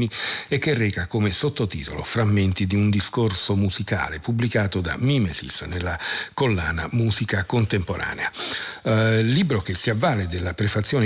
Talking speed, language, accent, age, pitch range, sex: 130 wpm, Italian, native, 50-69, 100-125 Hz, male